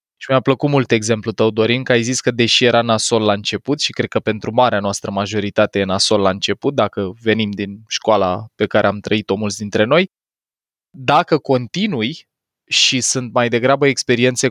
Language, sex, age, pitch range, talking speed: Romanian, male, 20-39, 110-140 Hz, 185 wpm